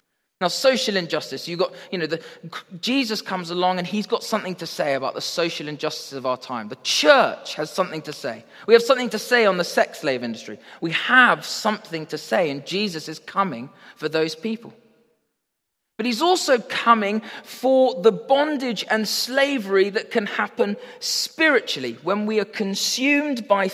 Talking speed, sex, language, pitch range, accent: 175 wpm, male, English, 155-235 Hz, British